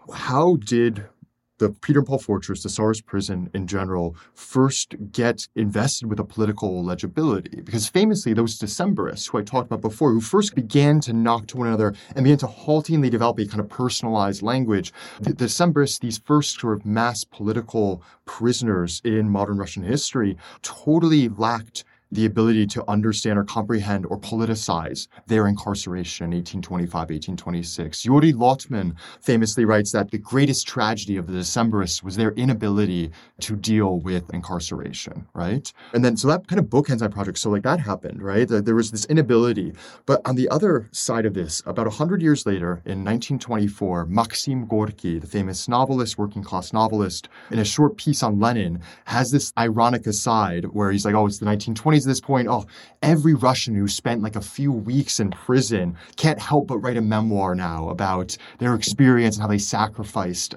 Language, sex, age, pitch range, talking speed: English, male, 20-39, 100-120 Hz, 175 wpm